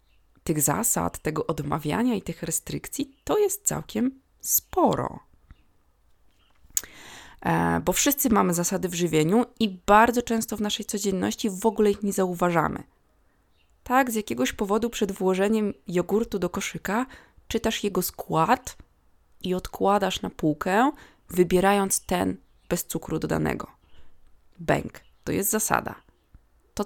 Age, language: 20-39, Polish